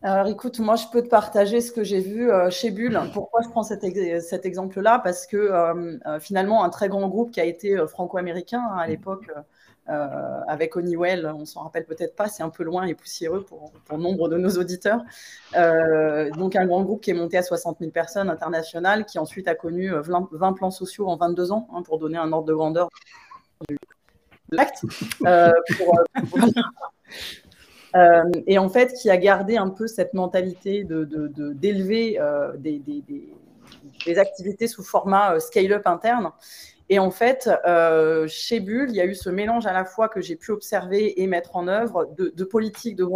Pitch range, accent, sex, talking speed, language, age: 165-210 Hz, French, female, 200 wpm, French, 30-49